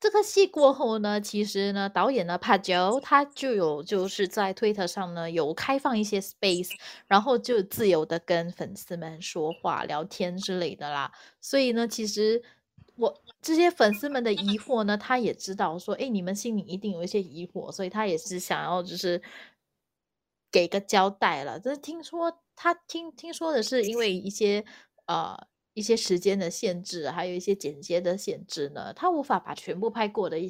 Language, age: Chinese, 20-39